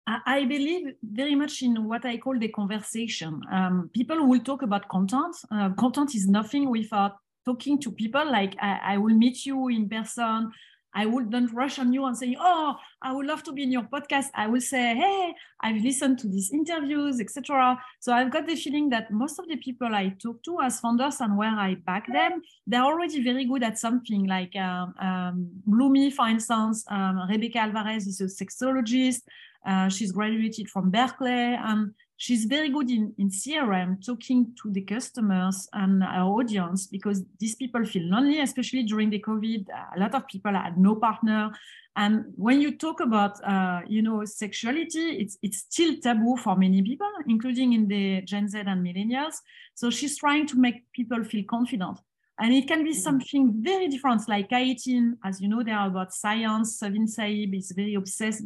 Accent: French